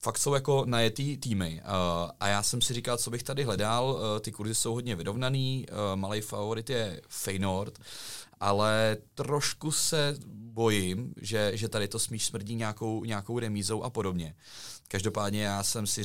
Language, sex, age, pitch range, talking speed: Czech, male, 30-49, 90-110 Hz, 155 wpm